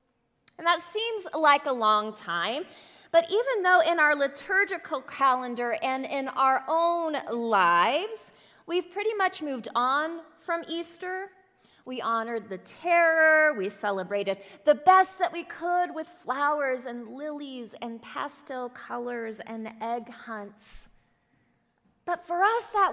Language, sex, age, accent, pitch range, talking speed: English, female, 20-39, American, 225-330 Hz, 135 wpm